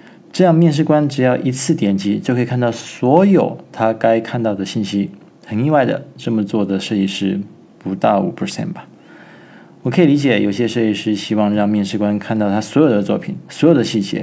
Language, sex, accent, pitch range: Chinese, male, native, 110-145 Hz